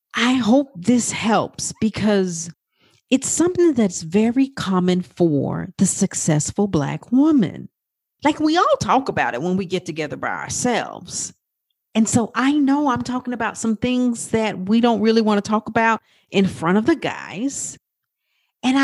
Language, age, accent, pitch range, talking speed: English, 40-59, American, 175-255 Hz, 160 wpm